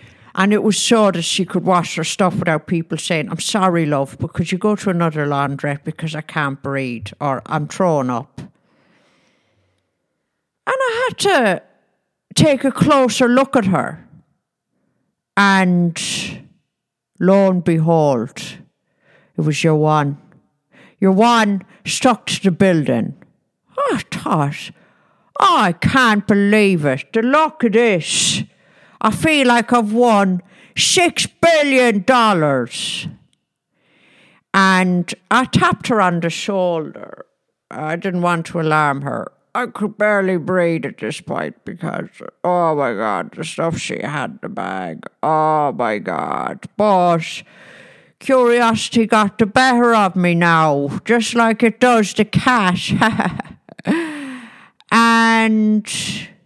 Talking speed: 130 wpm